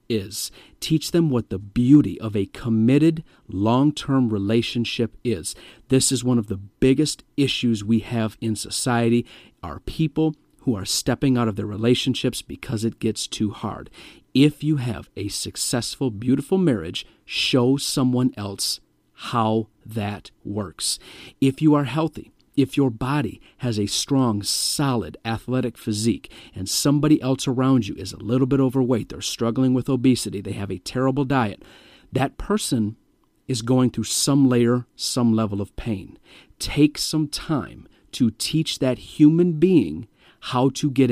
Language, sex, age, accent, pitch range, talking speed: English, male, 40-59, American, 110-135 Hz, 150 wpm